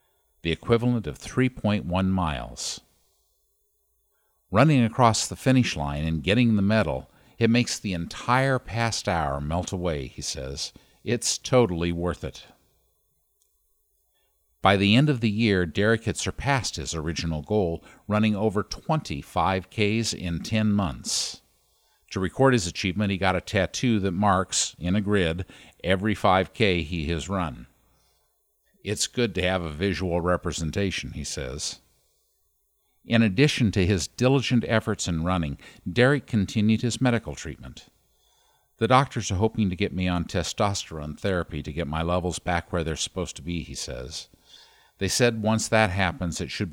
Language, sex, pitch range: English, male, 85-115 Hz